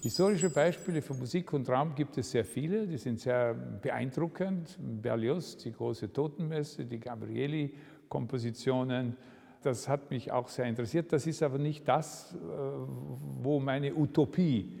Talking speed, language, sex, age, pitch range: 140 wpm, German, male, 50-69, 130-155 Hz